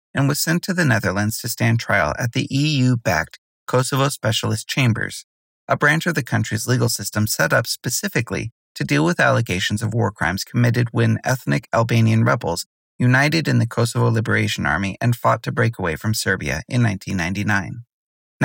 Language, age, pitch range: English, 30-49, 110-140 Hz